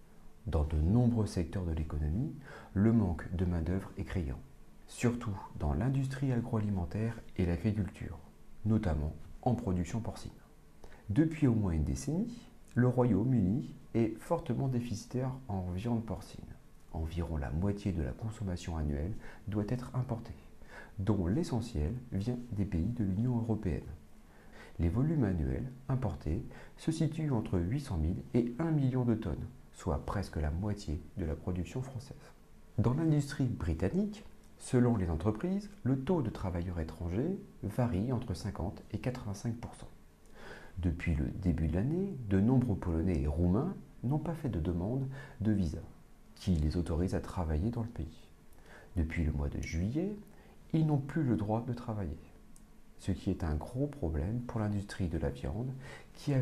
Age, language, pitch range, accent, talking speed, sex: 40-59, French, 85-125 Hz, French, 150 wpm, male